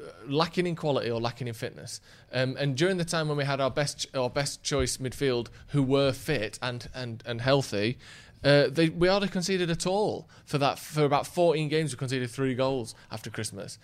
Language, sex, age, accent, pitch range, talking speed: English, male, 20-39, British, 120-155 Hz, 210 wpm